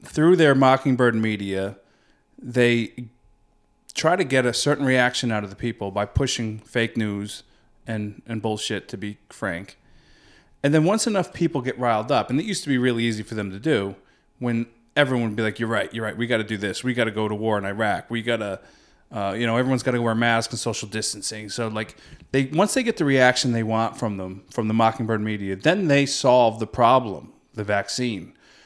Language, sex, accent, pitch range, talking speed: English, male, American, 110-135 Hz, 220 wpm